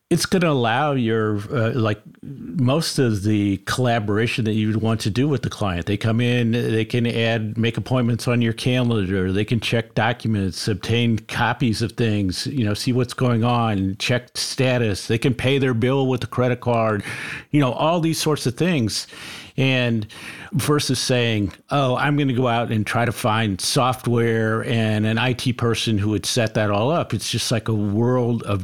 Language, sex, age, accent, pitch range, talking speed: English, male, 50-69, American, 110-130 Hz, 195 wpm